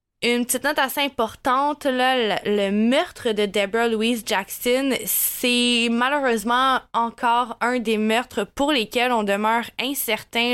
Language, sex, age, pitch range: French, female, 20-39, 205-245 Hz